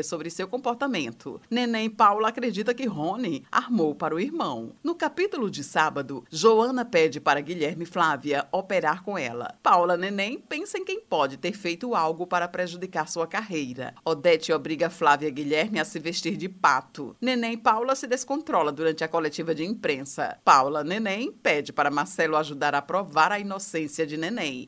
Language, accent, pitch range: Portuguese, Brazilian, 155-225 Hz